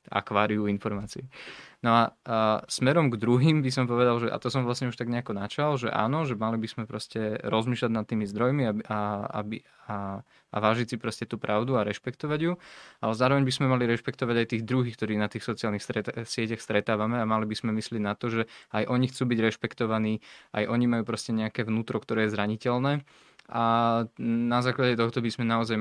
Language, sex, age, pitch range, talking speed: Slovak, male, 20-39, 105-120 Hz, 205 wpm